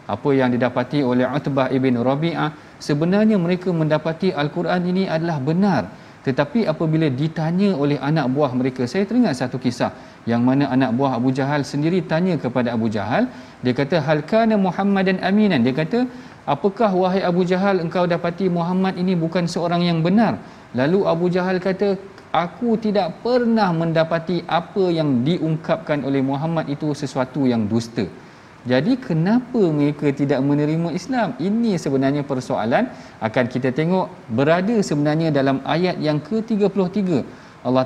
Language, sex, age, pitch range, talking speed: Malayalam, male, 40-59, 135-180 Hz, 145 wpm